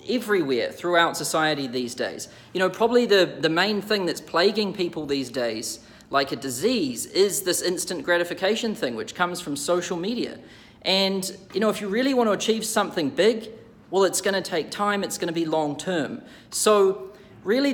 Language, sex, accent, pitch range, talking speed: English, male, Australian, 165-215 Hz, 175 wpm